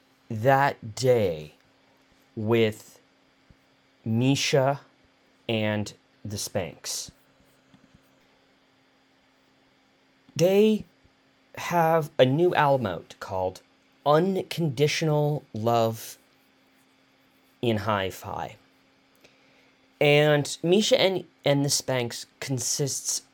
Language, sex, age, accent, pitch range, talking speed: English, male, 30-49, American, 115-150 Hz, 65 wpm